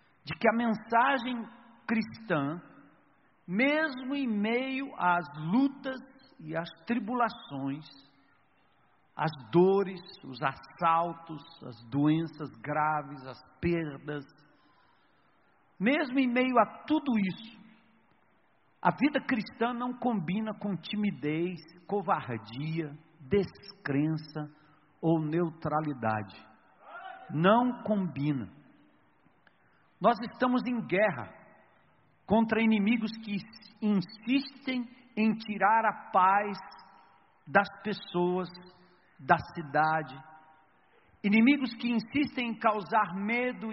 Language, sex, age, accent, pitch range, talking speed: Portuguese, male, 60-79, Brazilian, 160-230 Hz, 85 wpm